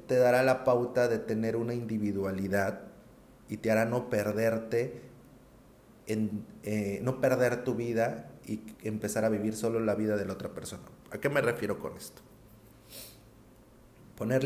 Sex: male